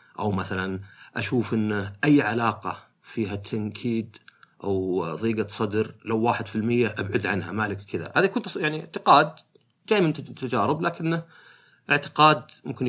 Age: 30-49